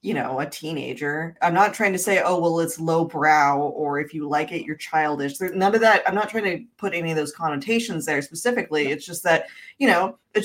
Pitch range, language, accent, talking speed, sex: 160-215 Hz, English, American, 235 wpm, female